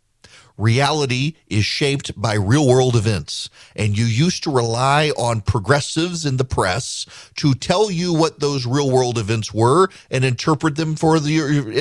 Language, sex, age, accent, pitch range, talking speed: English, male, 40-59, American, 120-165 Hz, 160 wpm